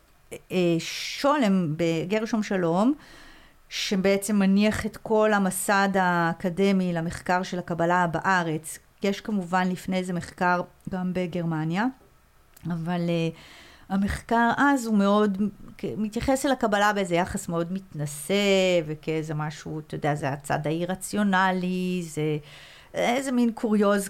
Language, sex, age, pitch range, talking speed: Hebrew, female, 50-69, 170-220 Hz, 115 wpm